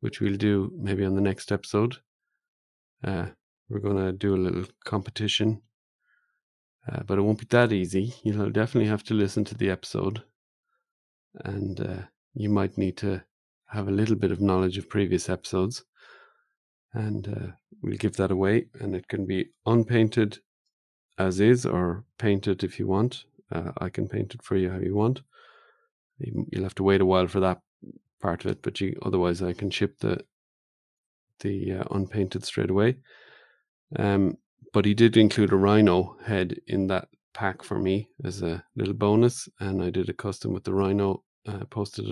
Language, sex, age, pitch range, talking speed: English, male, 40-59, 95-110 Hz, 175 wpm